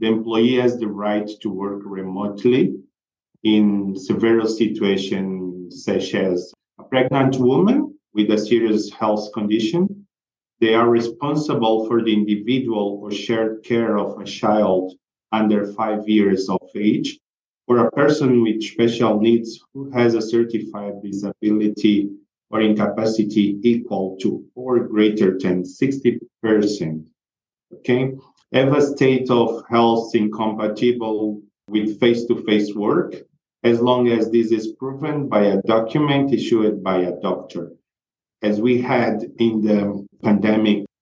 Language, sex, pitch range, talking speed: English, male, 100-120 Hz, 125 wpm